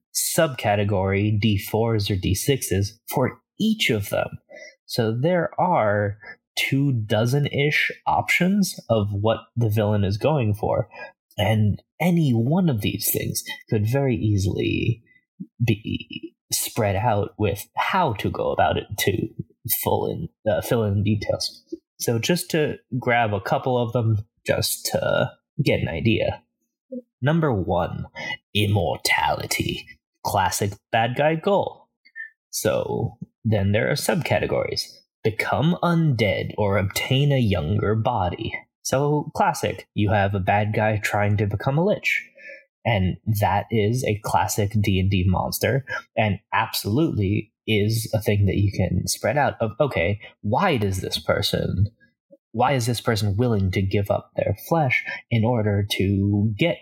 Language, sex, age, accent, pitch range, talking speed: English, male, 20-39, American, 100-140 Hz, 135 wpm